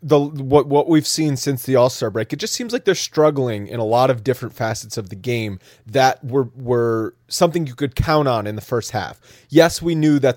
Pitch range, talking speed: 125-160 Hz, 230 wpm